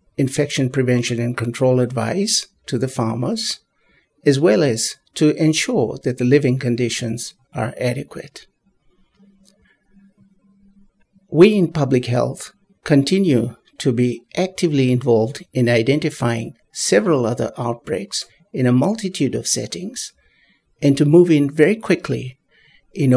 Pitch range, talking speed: 120-165 Hz, 115 wpm